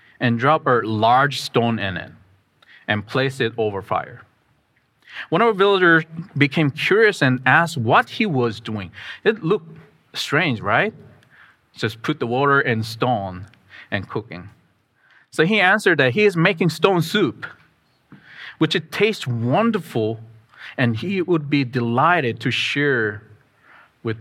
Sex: male